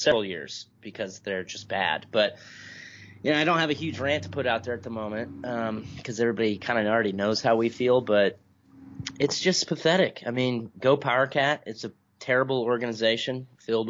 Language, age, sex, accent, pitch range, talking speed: English, 30-49, male, American, 105-130 Hz, 195 wpm